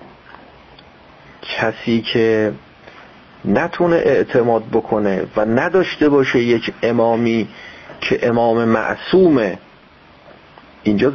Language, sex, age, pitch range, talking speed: Persian, male, 40-59, 115-155 Hz, 75 wpm